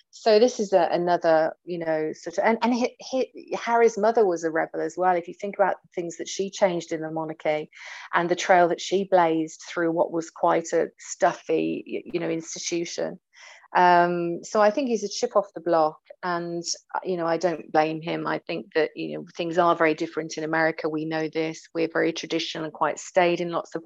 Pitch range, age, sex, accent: 160-190 Hz, 30-49, female, British